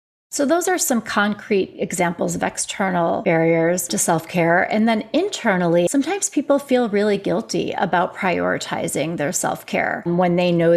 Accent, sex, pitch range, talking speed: American, female, 180-235 Hz, 145 wpm